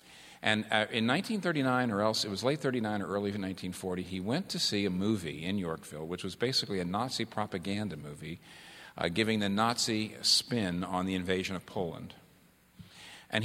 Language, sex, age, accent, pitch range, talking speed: English, male, 50-69, American, 100-145 Hz, 170 wpm